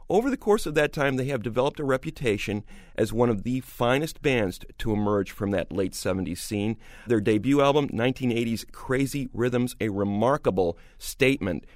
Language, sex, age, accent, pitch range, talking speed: English, male, 40-59, American, 110-140 Hz, 170 wpm